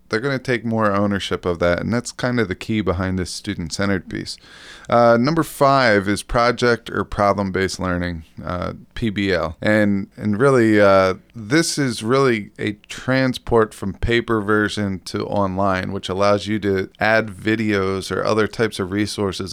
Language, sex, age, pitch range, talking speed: English, male, 20-39, 95-115 Hz, 165 wpm